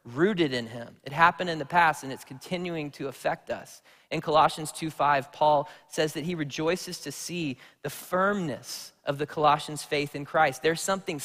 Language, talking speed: English, 185 wpm